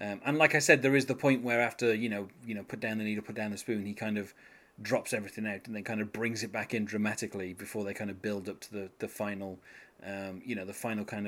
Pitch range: 110-145 Hz